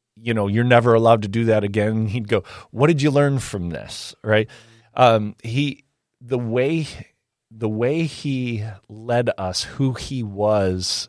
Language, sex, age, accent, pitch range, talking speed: English, male, 30-49, American, 100-120 Hz, 160 wpm